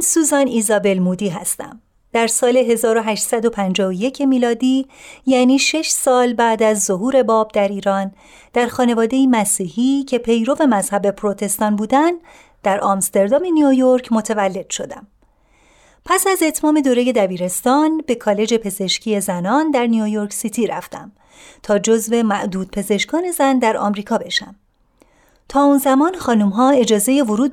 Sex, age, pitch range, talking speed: female, 30-49, 210-285 Hz, 125 wpm